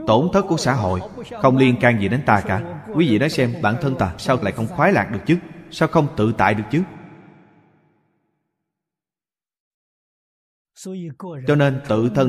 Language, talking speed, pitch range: Vietnamese, 175 wpm, 105-160 Hz